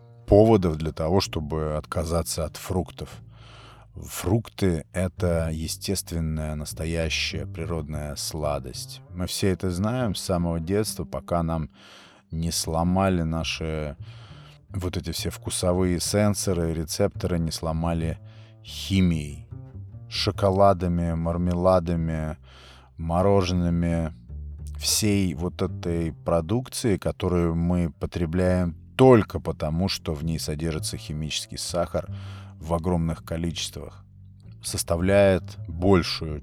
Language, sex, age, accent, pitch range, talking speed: Russian, male, 30-49, native, 80-100 Hz, 90 wpm